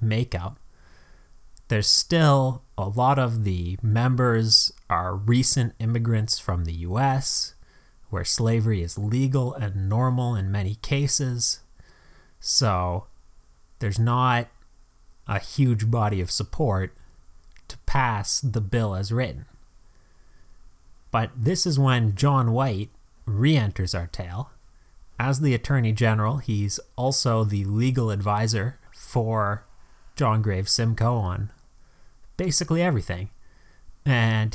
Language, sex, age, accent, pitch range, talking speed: English, male, 30-49, American, 100-125 Hz, 110 wpm